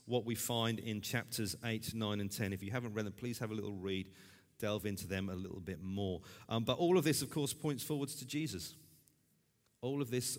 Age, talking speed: 40-59, 230 wpm